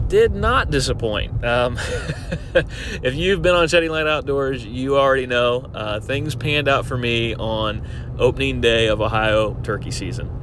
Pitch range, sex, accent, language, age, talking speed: 115-140 Hz, male, American, English, 30-49, 155 wpm